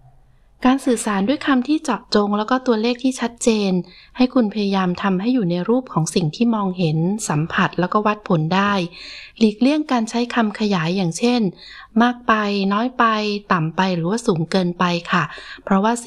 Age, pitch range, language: 20-39, 180-235 Hz, Thai